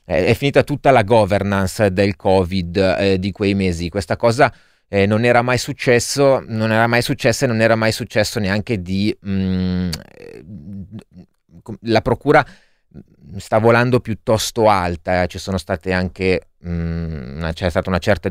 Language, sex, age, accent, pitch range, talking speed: Italian, male, 30-49, native, 95-110 Hz, 150 wpm